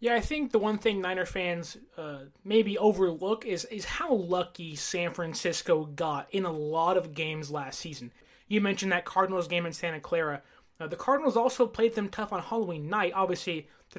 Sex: male